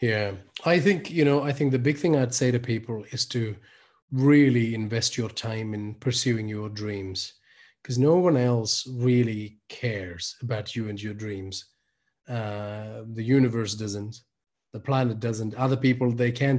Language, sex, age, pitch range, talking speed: Hindi, male, 30-49, 110-130 Hz, 165 wpm